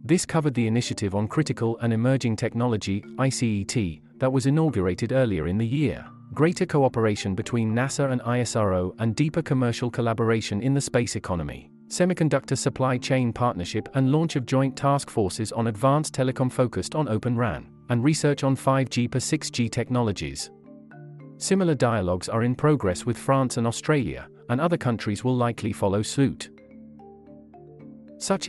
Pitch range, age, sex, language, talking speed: 110-135 Hz, 40-59, male, English, 150 wpm